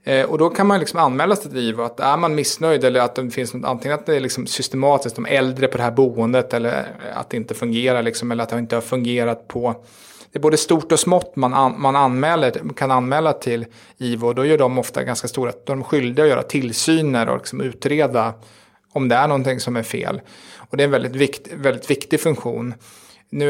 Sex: male